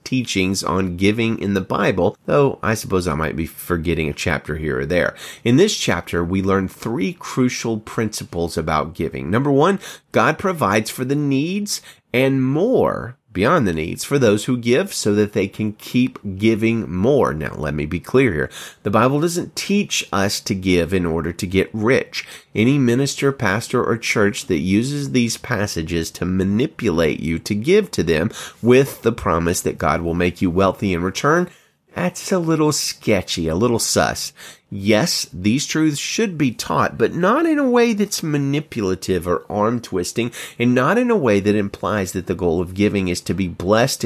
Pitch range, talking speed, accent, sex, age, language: 90-130 Hz, 180 wpm, American, male, 30-49, English